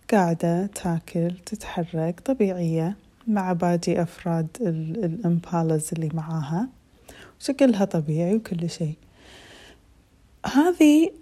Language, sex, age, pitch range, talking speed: Arabic, female, 30-49, 170-205 Hz, 80 wpm